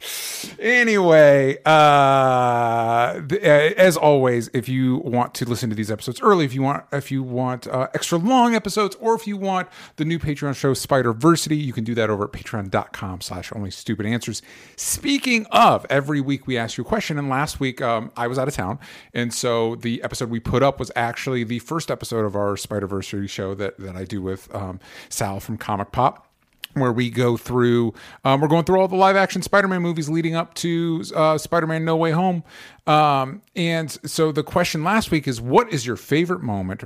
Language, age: English, 30-49